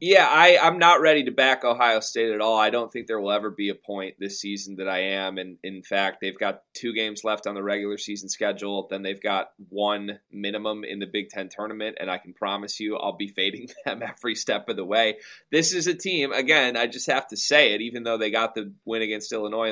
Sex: male